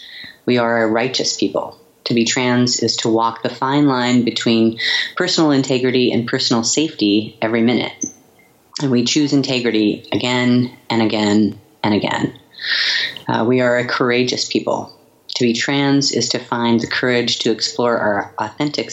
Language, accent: English, American